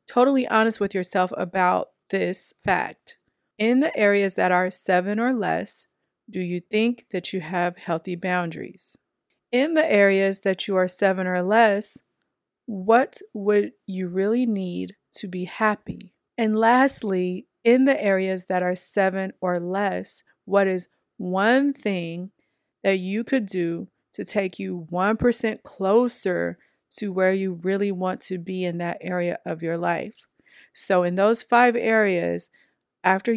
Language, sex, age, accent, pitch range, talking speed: English, female, 30-49, American, 185-220 Hz, 145 wpm